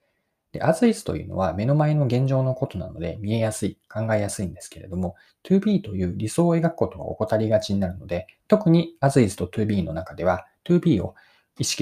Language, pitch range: Japanese, 95-155 Hz